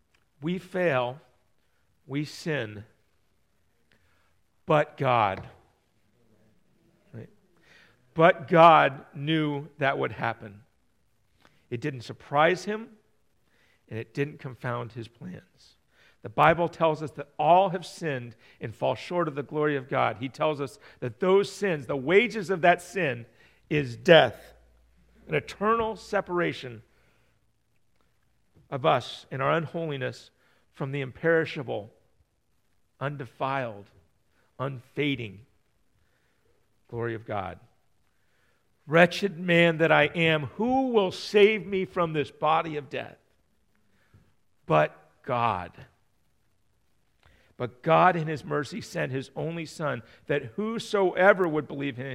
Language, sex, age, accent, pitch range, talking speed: English, male, 50-69, American, 120-170 Hz, 115 wpm